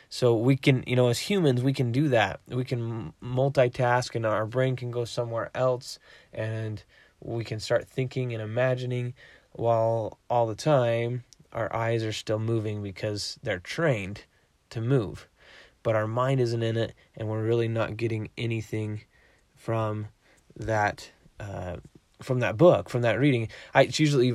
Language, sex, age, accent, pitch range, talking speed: English, male, 20-39, American, 110-130 Hz, 165 wpm